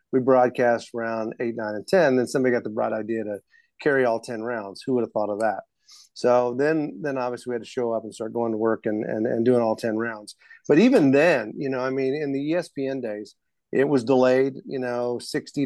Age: 40-59